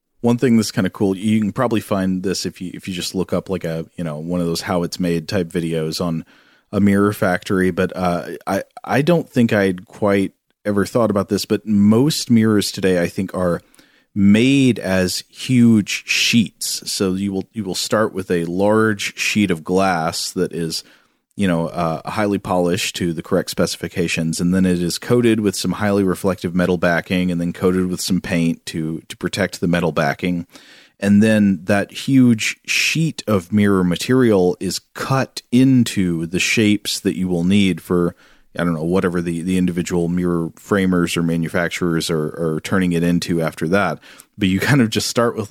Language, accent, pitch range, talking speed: English, American, 85-105 Hz, 190 wpm